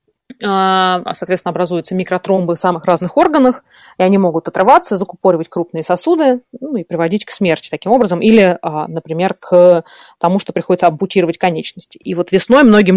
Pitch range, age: 175-220 Hz, 30-49